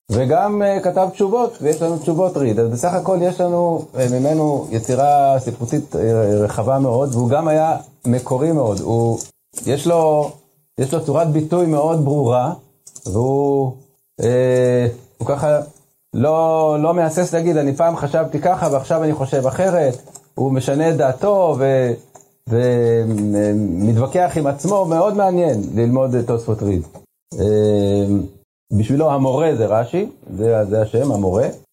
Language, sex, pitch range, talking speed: Hebrew, male, 115-160 Hz, 125 wpm